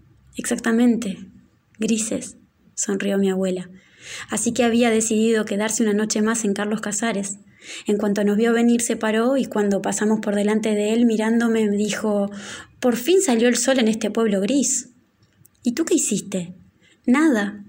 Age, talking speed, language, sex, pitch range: 20-39, 155 wpm, Spanish, female, 200-235 Hz